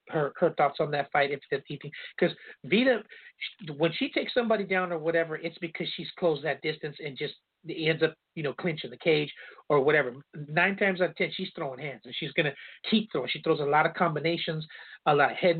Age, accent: 40-59, American